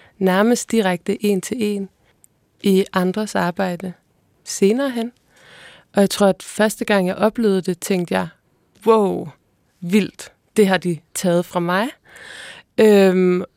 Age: 20-39